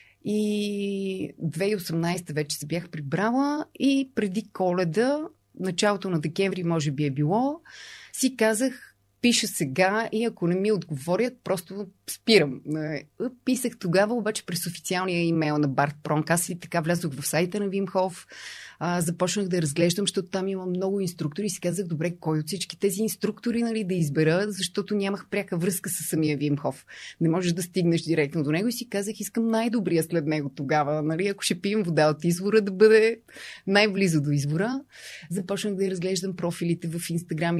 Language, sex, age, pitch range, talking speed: Bulgarian, female, 30-49, 165-210 Hz, 170 wpm